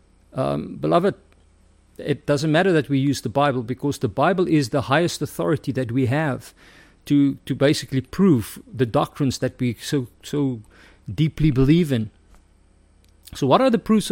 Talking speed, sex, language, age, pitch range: 160 wpm, male, English, 50-69, 125-170 Hz